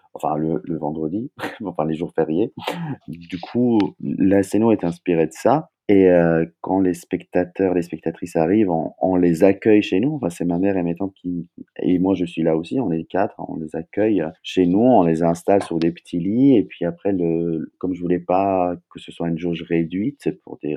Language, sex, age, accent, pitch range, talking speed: French, male, 30-49, French, 85-95 Hz, 220 wpm